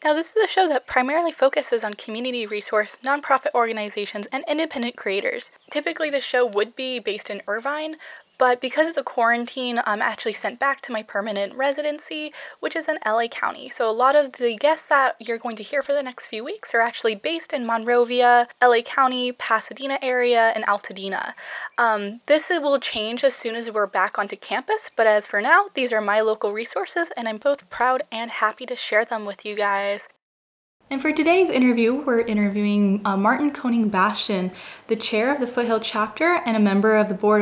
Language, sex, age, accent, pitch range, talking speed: English, female, 10-29, American, 210-275 Hz, 195 wpm